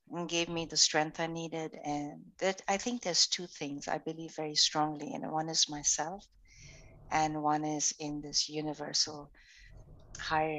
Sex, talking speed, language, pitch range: female, 160 wpm, English, 145-170 Hz